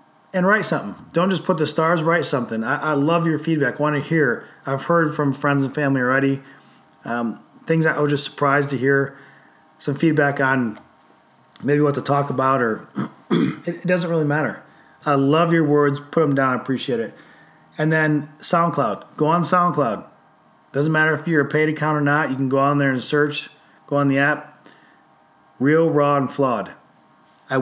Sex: male